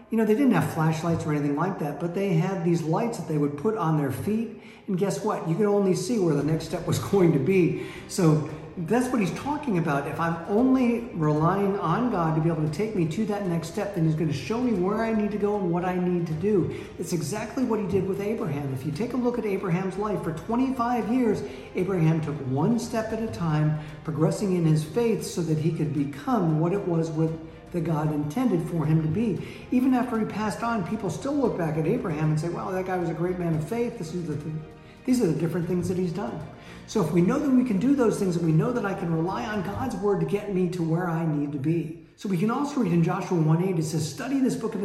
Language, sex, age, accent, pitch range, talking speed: English, male, 50-69, American, 160-220 Hz, 265 wpm